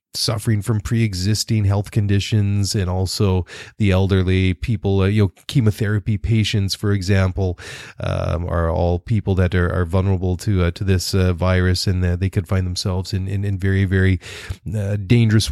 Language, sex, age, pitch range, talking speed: English, male, 30-49, 95-110 Hz, 165 wpm